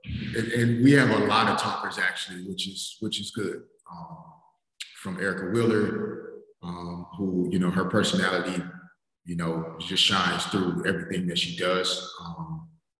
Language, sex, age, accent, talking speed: English, male, 30-49, American, 155 wpm